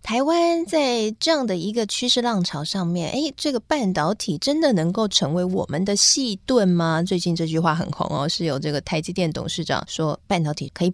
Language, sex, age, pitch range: Chinese, female, 20-39, 160-215 Hz